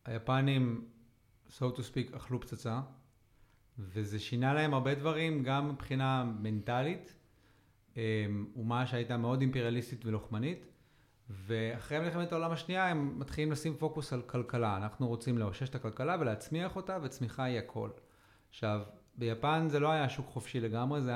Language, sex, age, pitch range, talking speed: Hebrew, male, 40-59, 115-155 Hz, 135 wpm